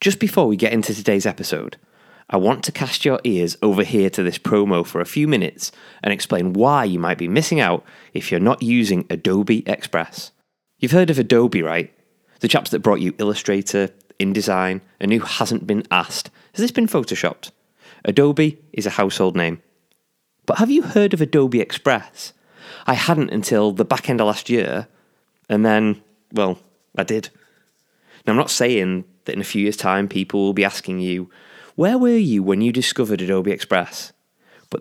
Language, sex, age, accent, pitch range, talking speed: English, male, 20-39, British, 95-145 Hz, 185 wpm